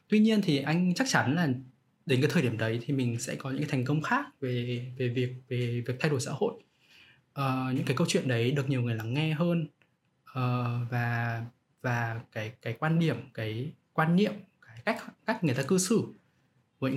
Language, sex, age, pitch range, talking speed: Vietnamese, male, 20-39, 125-165 Hz, 215 wpm